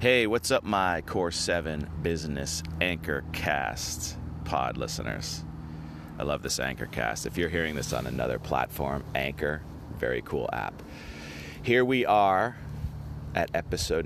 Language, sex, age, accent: English, male, 30-49, American